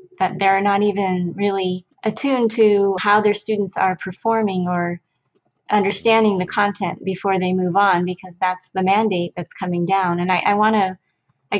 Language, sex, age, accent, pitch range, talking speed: English, female, 20-39, American, 175-200 Hz, 165 wpm